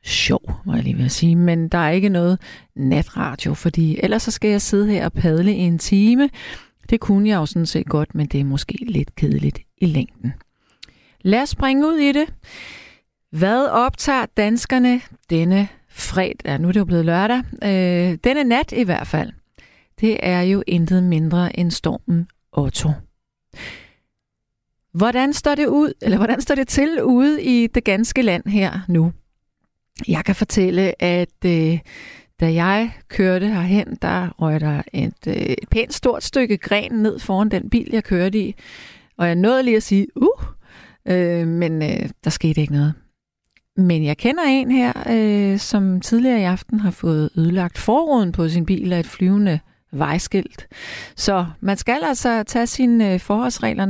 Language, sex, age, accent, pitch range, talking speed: Danish, female, 40-59, native, 165-220 Hz, 170 wpm